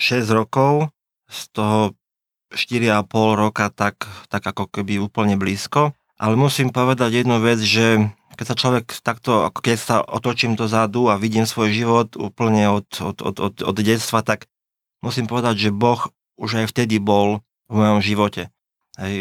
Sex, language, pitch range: male, Slovak, 100-110 Hz